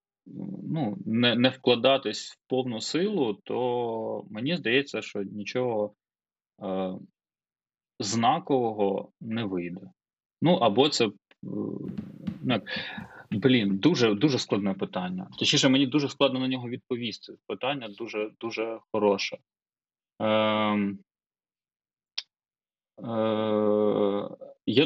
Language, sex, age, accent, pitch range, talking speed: Ukrainian, male, 20-39, native, 105-130 Hz, 95 wpm